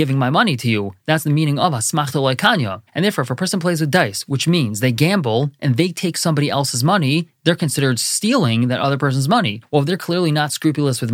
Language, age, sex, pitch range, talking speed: English, 20-39, male, 130-170 Hz, 235 wpm